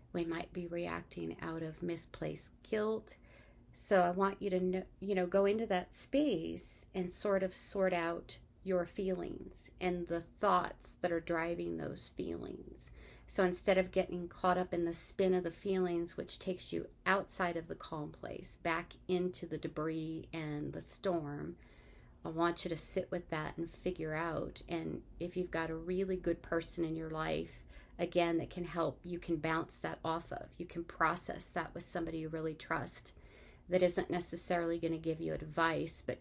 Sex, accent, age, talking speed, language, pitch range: female, American, 40-59, 180 wpm, English, 160-180 Hz